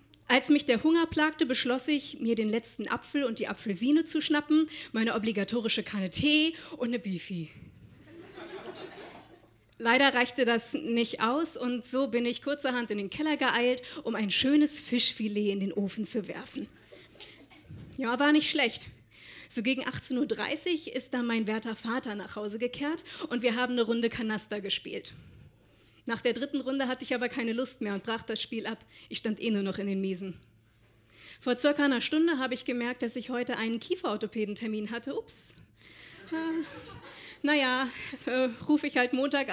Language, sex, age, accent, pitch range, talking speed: German, female, 30-49, German, 215-280 Hz, 170 wpm